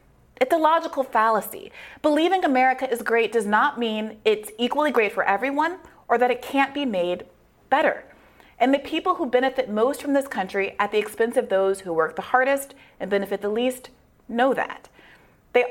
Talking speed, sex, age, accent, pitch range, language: 185 wpm, female, 30-49, American, 200-275 Hz, English